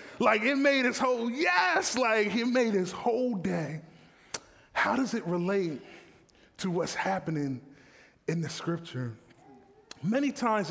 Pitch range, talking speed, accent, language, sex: 195-280 Hz, 135 wpm, American, English, male